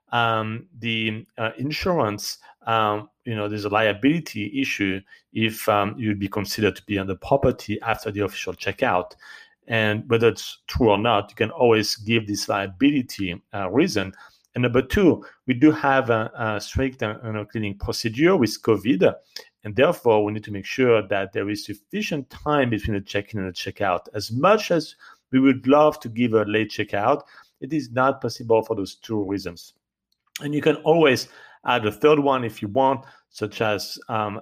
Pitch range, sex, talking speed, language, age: 105-130 Hz, male, 185 wpm, English, 40-59